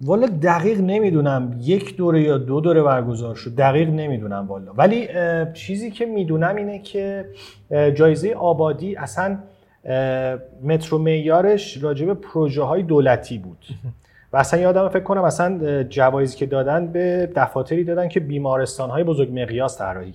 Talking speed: 150 wpm